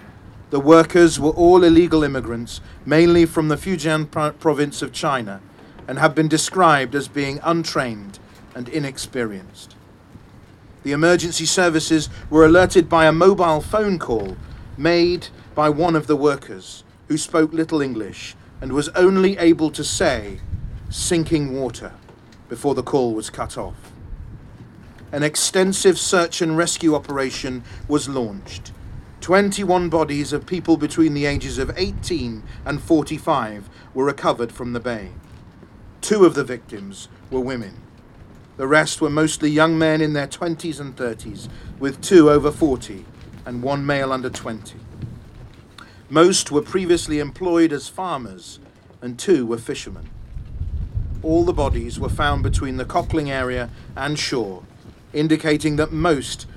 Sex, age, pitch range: male, 40-59, 110-160 Hz